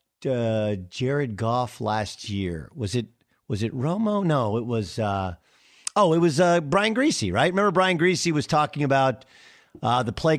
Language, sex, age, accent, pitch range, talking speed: English, male, 50-69, American, 120-170 Hz, 175 wpm